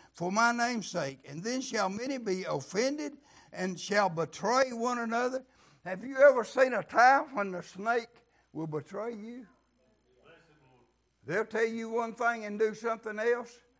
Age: 60-79